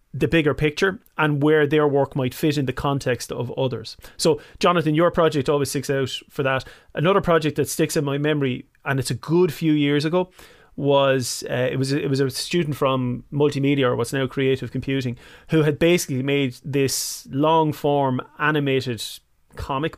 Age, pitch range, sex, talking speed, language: 30-49, 130-160 Hz, male, 185 wpm, English